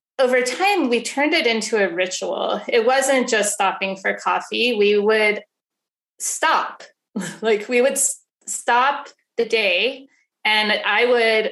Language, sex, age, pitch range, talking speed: English, female, 20-39, 195-235 Hz, 135 wpm